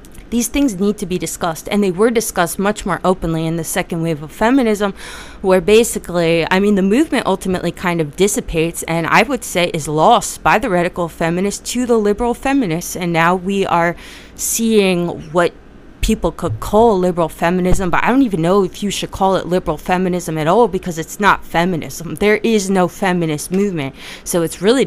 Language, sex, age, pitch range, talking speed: English, female, 30-49, 170-215 Hz, 195 wpm